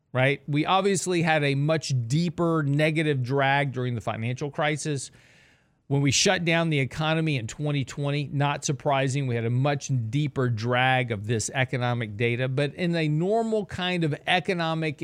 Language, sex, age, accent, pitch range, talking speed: English, male, 40-59, American, 135-175 Hz, 160 wpm